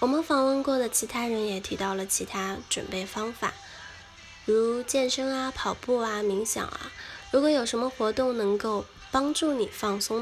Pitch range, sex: 205-255 Hz, female